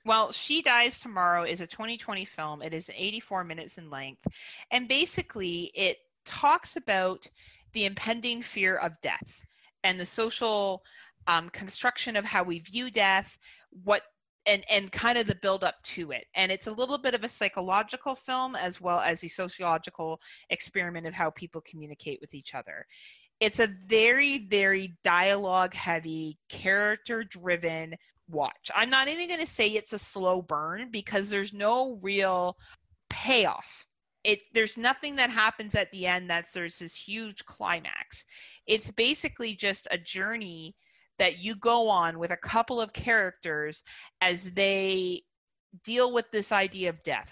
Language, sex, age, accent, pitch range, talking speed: English, female, 30-49, American, 175-225 Hz, 155 wpm